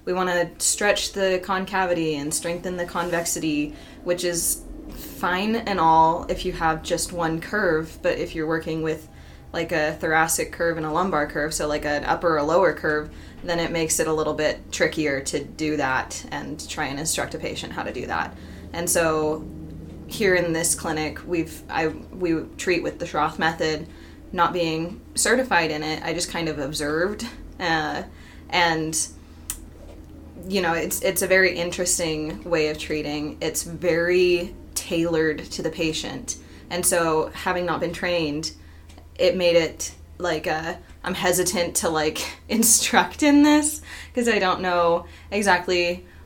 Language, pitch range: English, 155-180 Hz